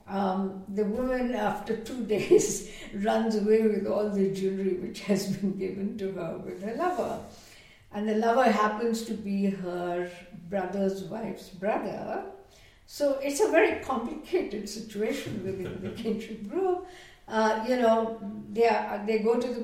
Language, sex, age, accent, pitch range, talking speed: English, female, 60-79, Indian, 190-230 Hz, 145 wpm